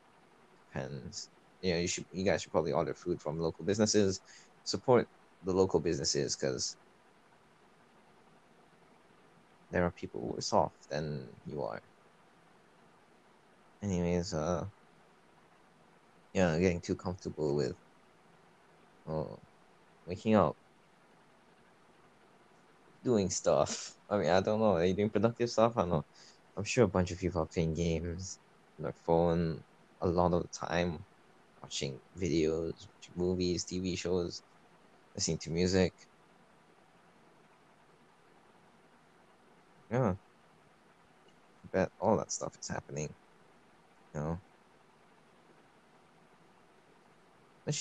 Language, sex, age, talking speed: English, male, 20-39, 105 wpm